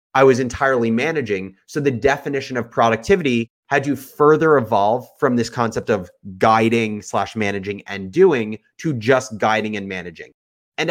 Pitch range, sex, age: 110-145 Hz, male, 30-49